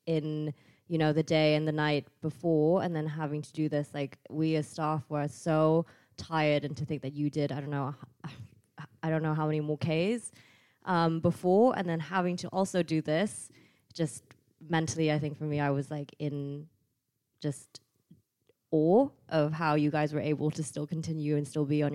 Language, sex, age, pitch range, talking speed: French, female, 20-39, 145-175 Hz, 195 wpm